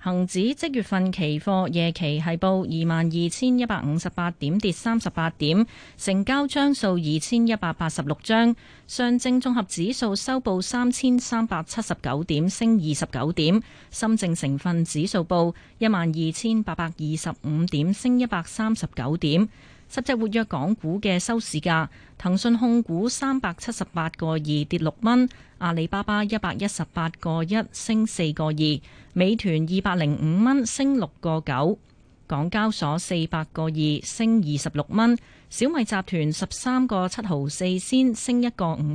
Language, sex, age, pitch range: Chinese, female, 30-49, 160-225 Hz